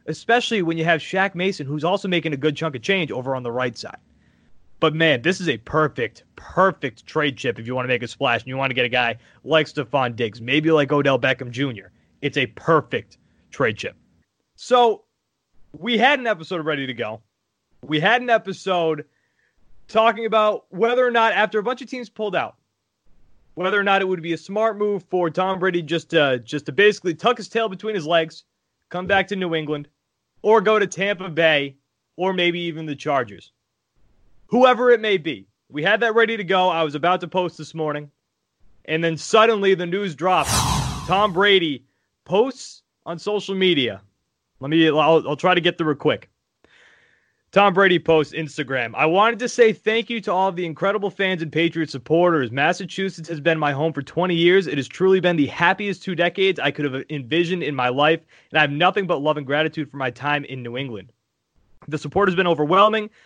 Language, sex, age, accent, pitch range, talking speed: English, male, 30-49, American, 145-195 Hz, 205 wpm